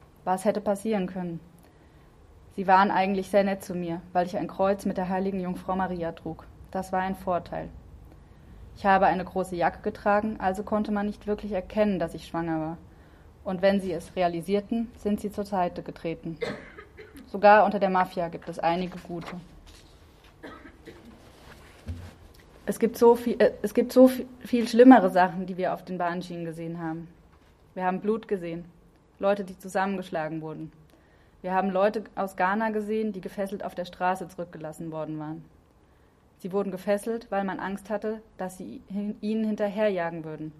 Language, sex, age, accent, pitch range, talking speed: German, female, 20-39, German, 165-205 Hz, 165 wpm